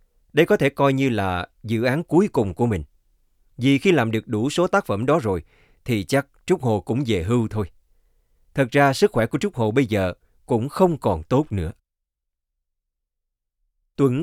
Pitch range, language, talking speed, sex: 105-160 Hz, Vietnamese, 190 wpm, male